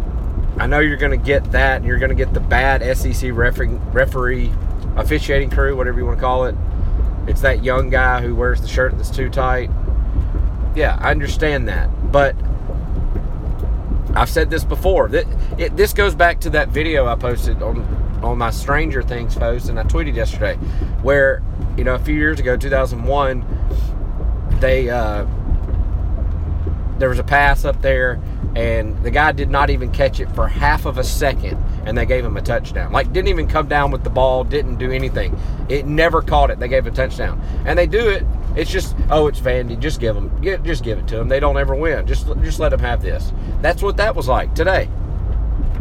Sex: male